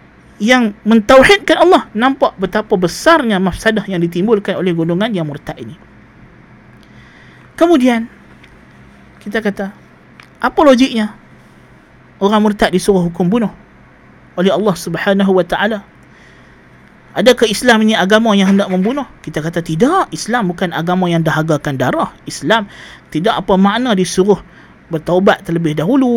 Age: 30-49